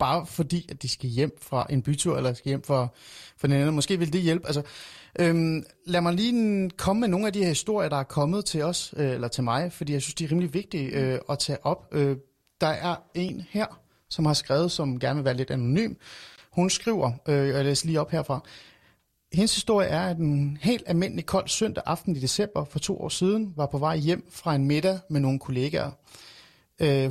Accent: native